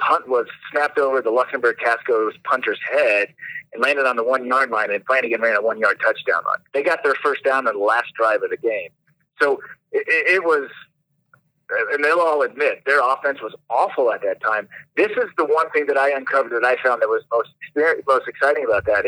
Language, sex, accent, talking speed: English, male, American, 215 wpm